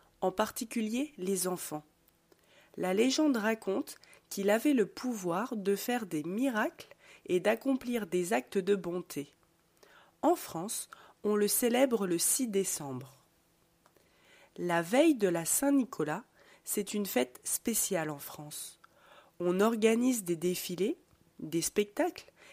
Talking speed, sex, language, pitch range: 125 wpm, female, French, 180-250 Hz